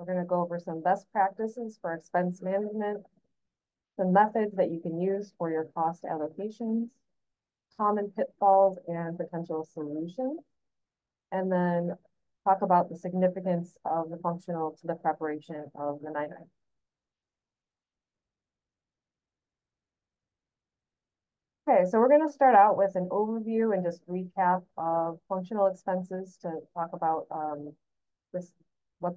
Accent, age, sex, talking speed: American, 30-49, female, 130 wpm